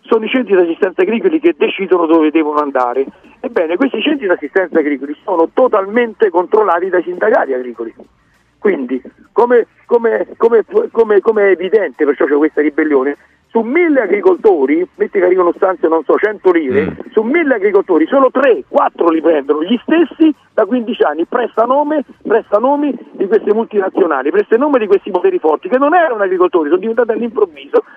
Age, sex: 50-69, male